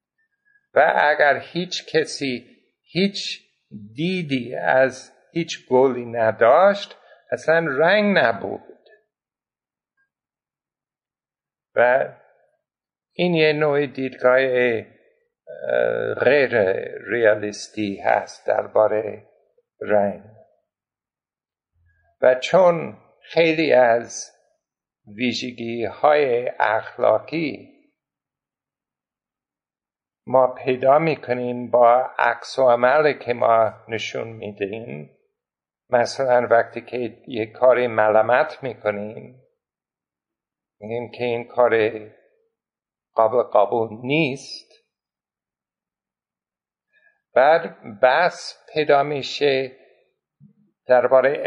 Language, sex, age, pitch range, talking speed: Persian, male, 60-79, 120-160 Hz, 70 wpm